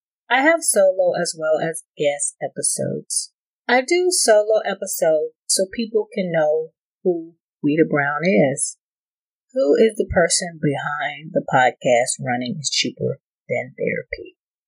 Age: 30-49